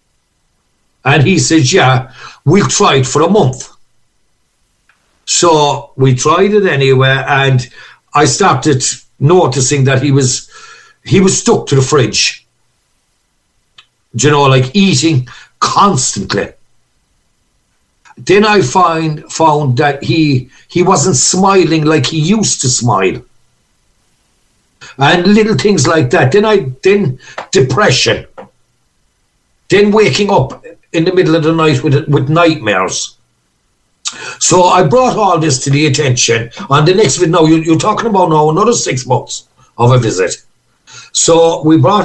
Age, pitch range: 60-79, 130-180 Hz